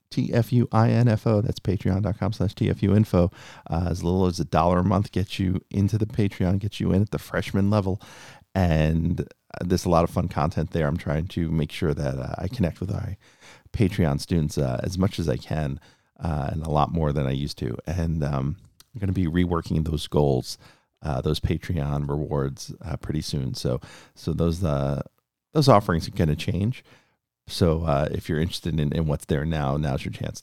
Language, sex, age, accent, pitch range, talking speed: English, male, 40-59, American, 80-105 Hz, 195 wpm